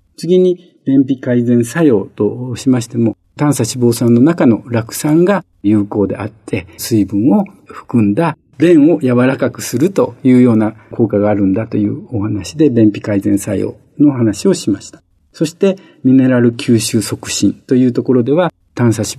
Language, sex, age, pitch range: Japanese, male, 50-69, 110-145 Hz